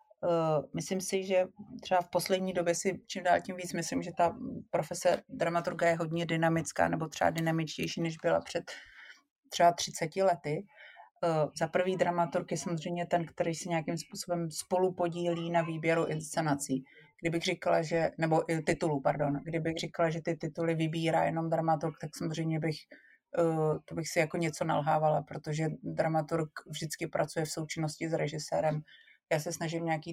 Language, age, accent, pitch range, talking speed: Czech, 30-49, native, 150-170 Hz, 155 wpm